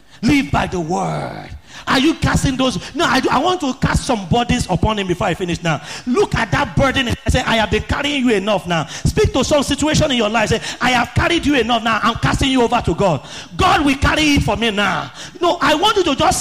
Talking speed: 250 wpm